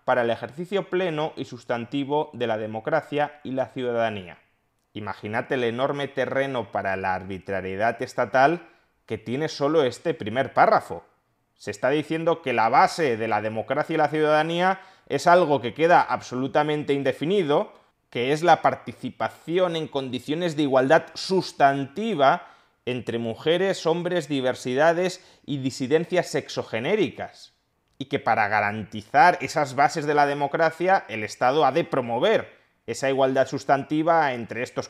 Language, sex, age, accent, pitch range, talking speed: Spanish, male, 30-49, Spanish, 115-160 Hz, 135 wpm